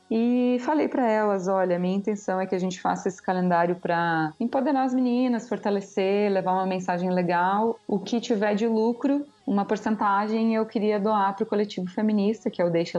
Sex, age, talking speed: female, 20-39, 195 wpm